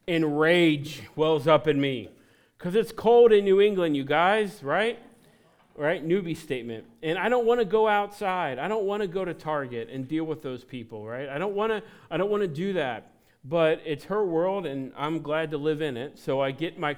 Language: English